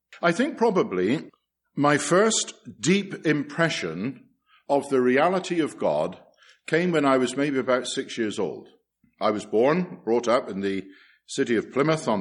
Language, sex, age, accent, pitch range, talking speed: English, male, 50-69, British, 110-140 Hz, 155 wpm